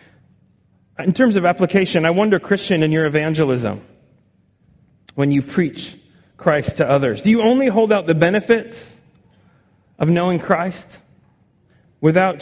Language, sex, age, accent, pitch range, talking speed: English, male, 30-49, American, 140-175 Hz, 130 wpm